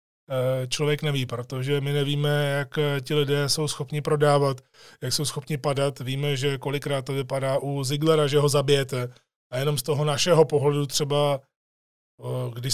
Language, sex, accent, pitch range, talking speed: Czech, male, native, 140-155 Hz, 155 wpm